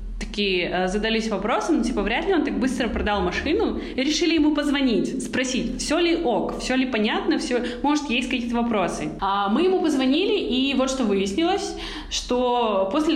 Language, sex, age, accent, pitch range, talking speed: Russian, female, 20-39, native, 210-280 Hz, 165 wpm